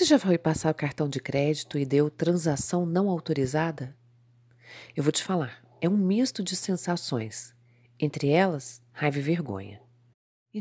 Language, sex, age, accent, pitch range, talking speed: Portuguese, female, 40-59, Brazilian, 125-215 Hz, 160 wpm